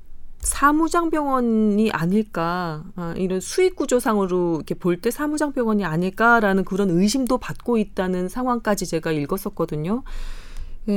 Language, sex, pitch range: Korean, female, 170-240 Hz